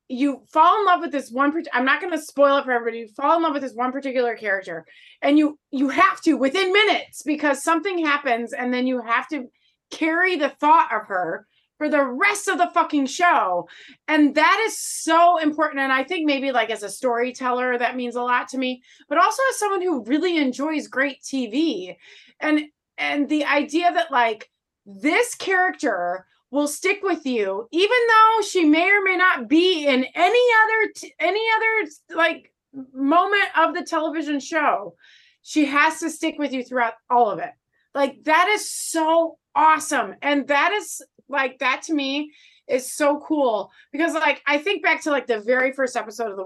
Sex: female